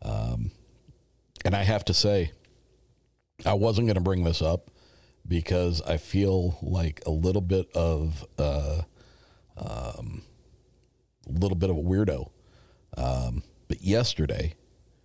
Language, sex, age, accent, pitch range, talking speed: English, male, 40-59, American, 85-110 Hz, 130 wpm